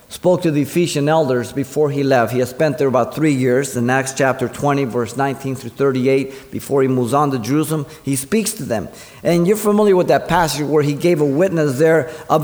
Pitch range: 120-160 Hz